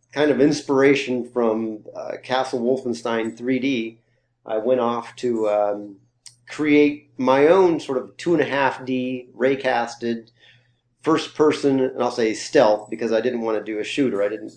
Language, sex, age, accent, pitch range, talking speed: English, male, 40-59, American, 110-130 Hz, 145 wpm